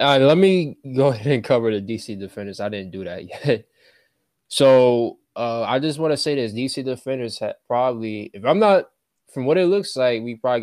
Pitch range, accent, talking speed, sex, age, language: 100-115 Hz, American, 215 wpm, male, 20-39, English